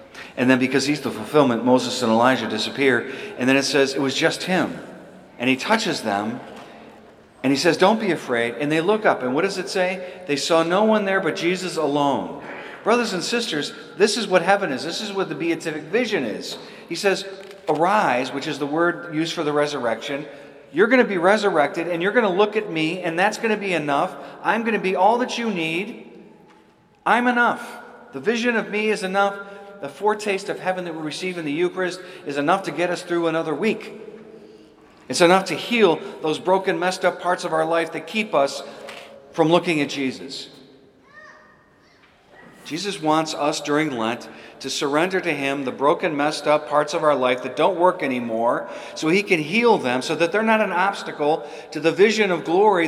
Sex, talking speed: male, 205 wpm